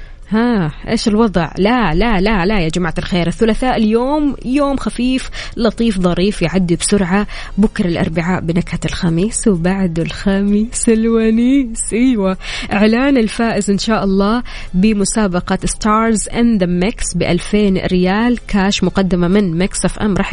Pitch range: 180-225 Hz